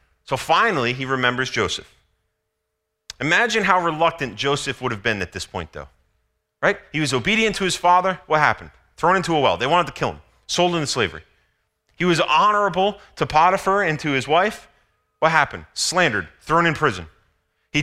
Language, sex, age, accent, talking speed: English, male, 30-49, American, 180 wpm